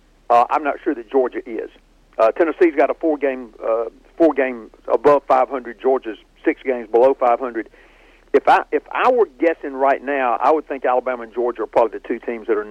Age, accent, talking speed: 50-69, American, 215 wpm